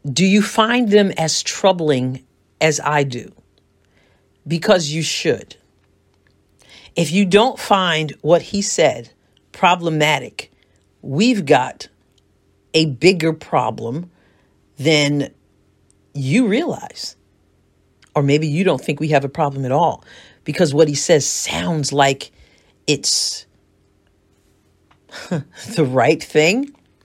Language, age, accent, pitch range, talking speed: English, 50-69, American, 140-220 Hz, 110 wpm